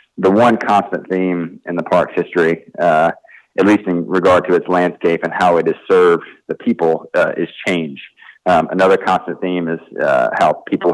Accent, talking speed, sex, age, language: American, 185 wpm, male, 30-49, English